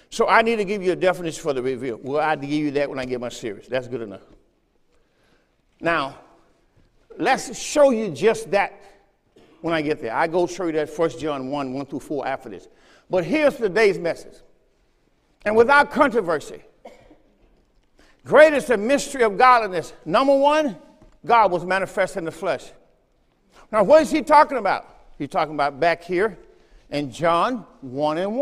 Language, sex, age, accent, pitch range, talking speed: English, male, 50-69, American, 185-275 Hz, 175 wpm